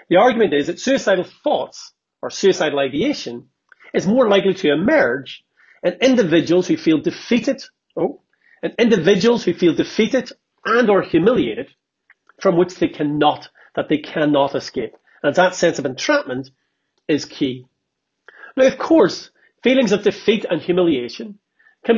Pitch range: 160-240 Hz